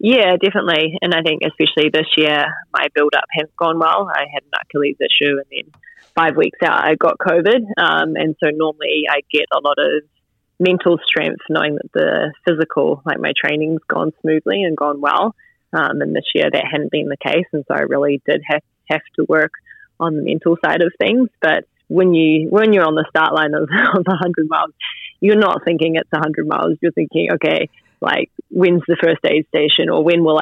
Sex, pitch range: female, 150-175 Hz